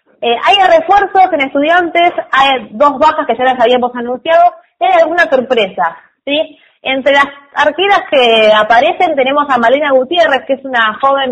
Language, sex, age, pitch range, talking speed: Spanish, female, 20-39, 230-300 Hz, 165 wpm